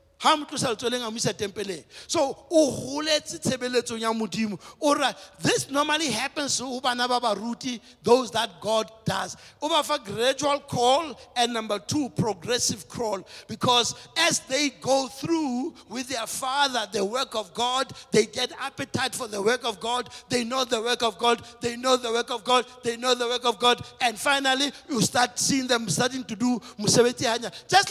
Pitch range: 225-280 Hz